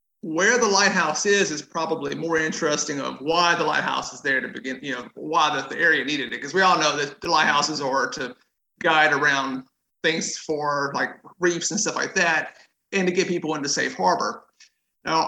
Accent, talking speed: American, 200 wpm